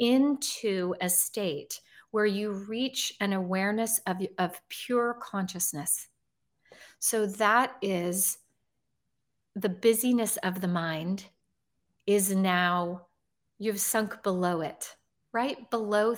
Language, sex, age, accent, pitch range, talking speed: English, female, 40-59, American, 185-235 Hz, 105 wpm